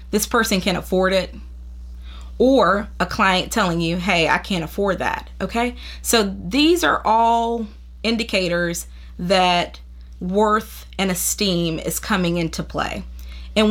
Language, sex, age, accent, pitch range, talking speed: English, female, 20-39, American, 170-230 Hz, 125 wpm